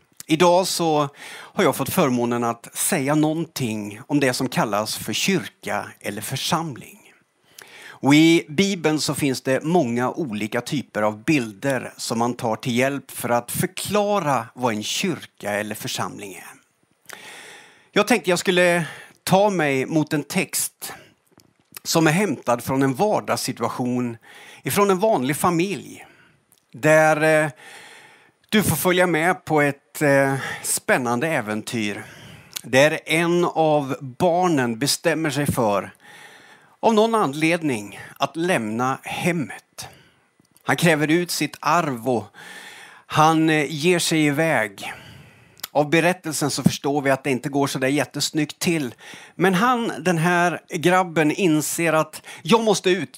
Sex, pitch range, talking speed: male, 130-175 Hz, 130 wpm